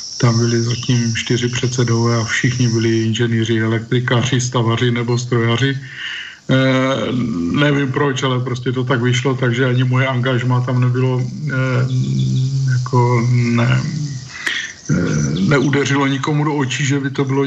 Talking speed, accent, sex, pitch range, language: 120 wpm, native, male, 120-130 Hz, Czech